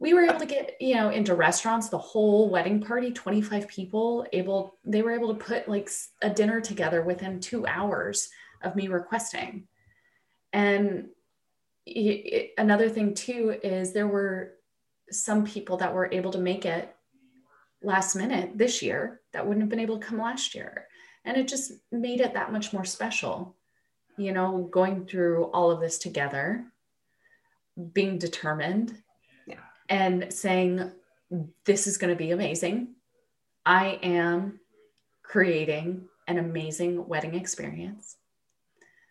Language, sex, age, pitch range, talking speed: English, female, 20-39, 175-225 Hz, 140 wpm